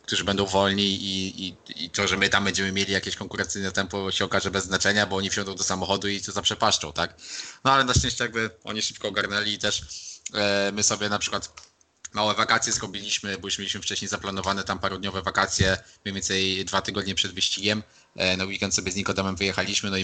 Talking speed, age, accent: 205 wpm, 20-39, native